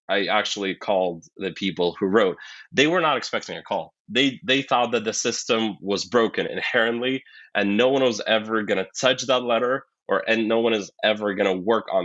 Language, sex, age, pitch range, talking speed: English, male, 20-39, 100-130 Hz, 210 wpm